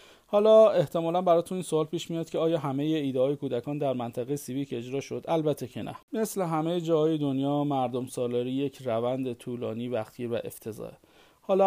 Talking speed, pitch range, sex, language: 180 wpm, 125-160 Hz, male, Persian